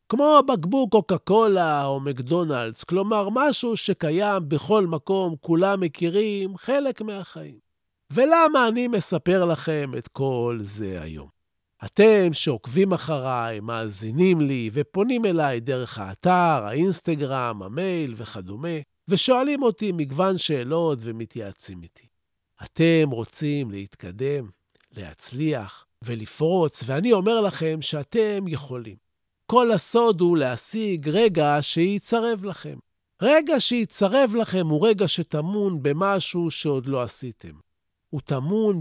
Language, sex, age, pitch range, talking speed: Hebrew, male, 50-69, 125-195 Hz, 110 wpm